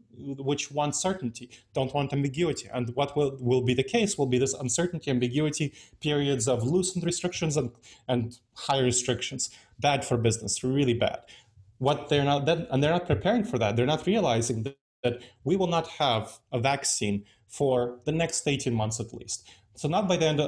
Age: 30-49